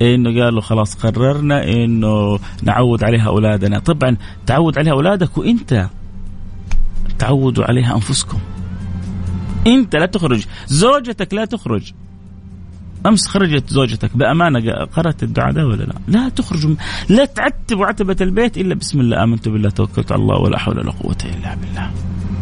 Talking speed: 135 wpm